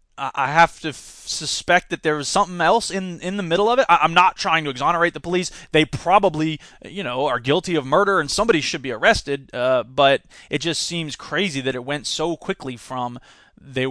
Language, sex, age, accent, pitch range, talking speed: English, male, 20-39, American, 140-175 Hz, 215 wpm